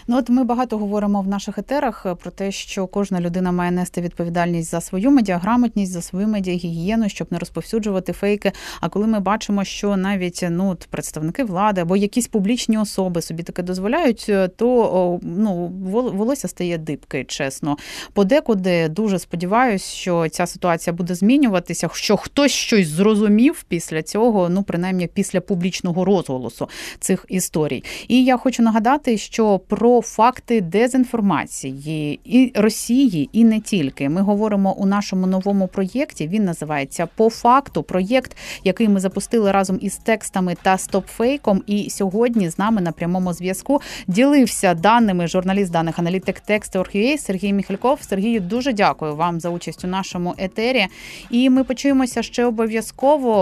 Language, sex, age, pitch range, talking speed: Ukrainian, female, 30-49, 180-225 Hz, 145 wpm